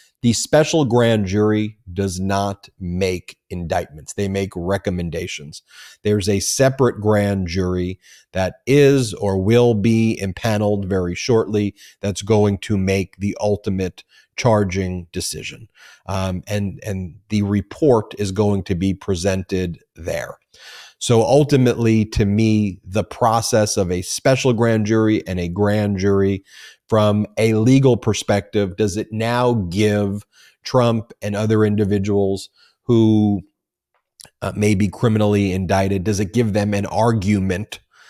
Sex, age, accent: male, 30-49, American